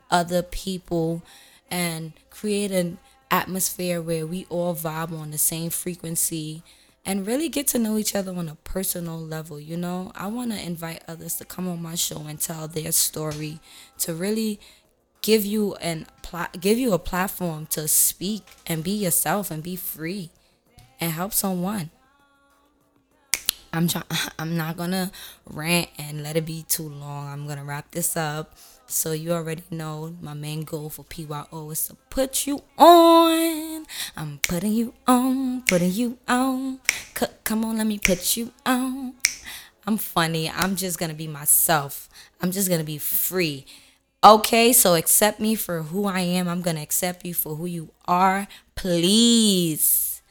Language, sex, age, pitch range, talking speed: English, female, 20-39, 160-210 Hz, 170 wpm